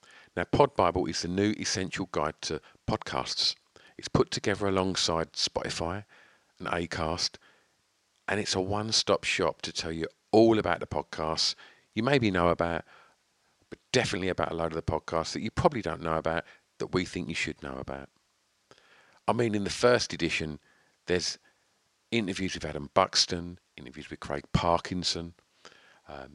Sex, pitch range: male, 80-105 Hz